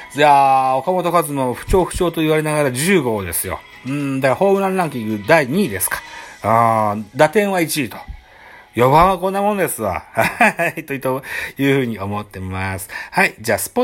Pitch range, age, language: 115-165 Hz, 40-59, Japanese